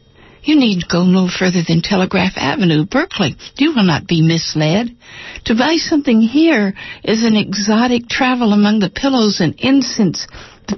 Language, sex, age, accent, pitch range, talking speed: English, female, 60-79, American, 175-215 Hz, 160 wpm